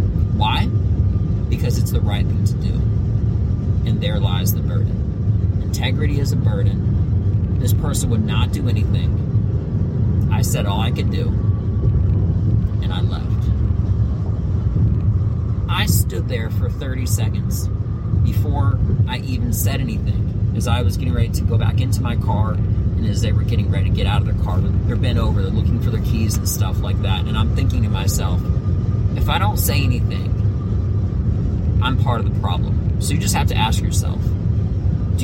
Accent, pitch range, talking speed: American, 100-105 Hz, 170 wpm